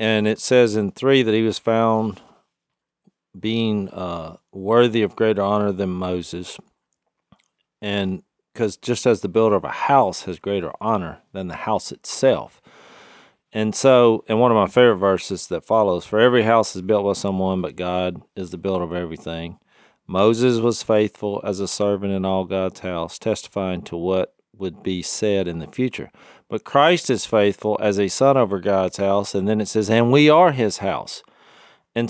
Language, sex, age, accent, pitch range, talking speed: English, male, 40-59, American, 95-130 Hz, 180 wpm